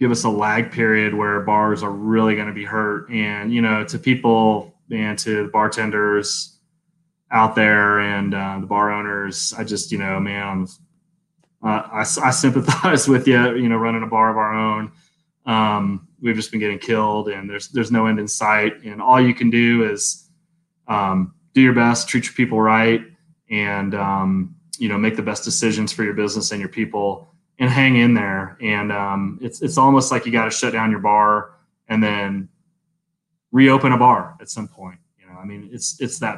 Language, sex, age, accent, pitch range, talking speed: English, male, 20-39, American, 105-130 Hz, 200 wpm